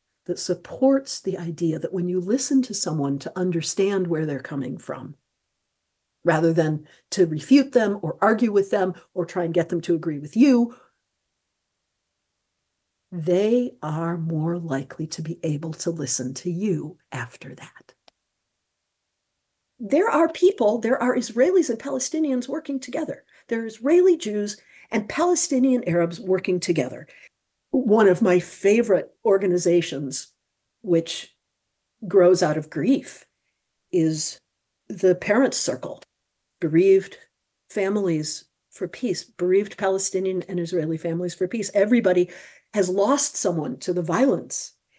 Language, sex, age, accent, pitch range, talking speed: English, female, 50-69, American, 165-230 Hz, 130 wpm